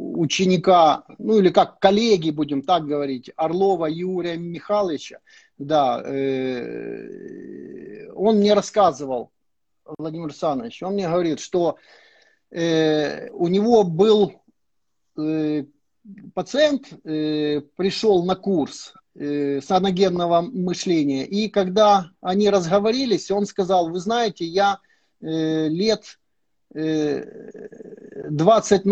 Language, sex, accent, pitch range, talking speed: Russian, male, native, 165-205 Hz, 90 wpm